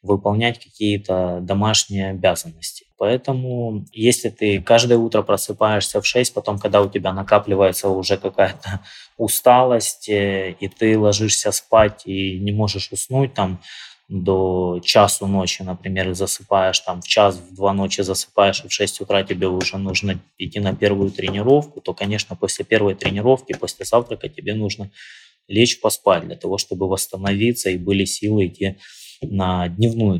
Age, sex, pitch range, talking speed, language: 20-39, male, 95-110 Hz, 135 wpm, Russian